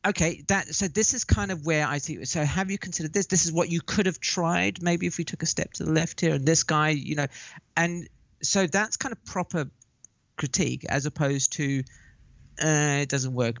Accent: British